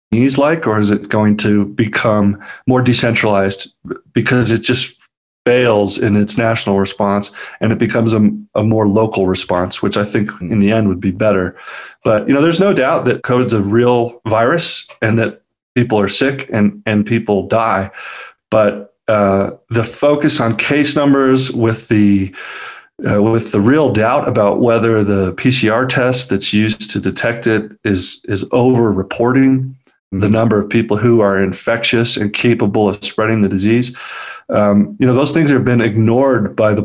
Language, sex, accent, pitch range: English, male, American, 100-120 Hz